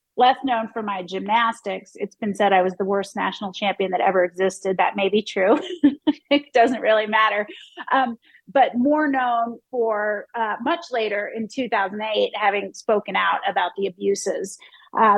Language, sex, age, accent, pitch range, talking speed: English, female, 30-49, American, 200-255 Hz, 165 wpm